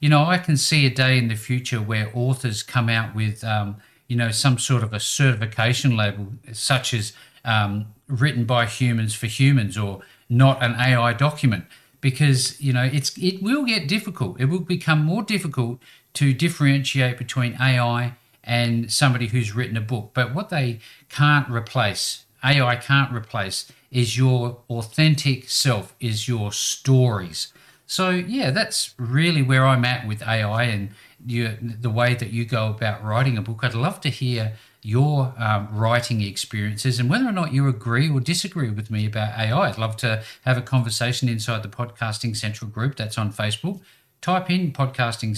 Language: English